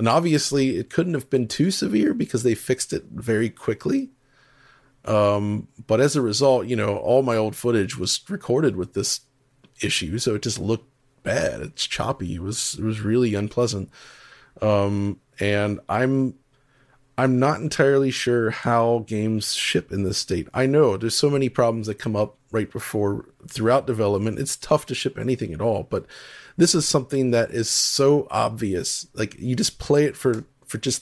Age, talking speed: 30-49, 175 wpm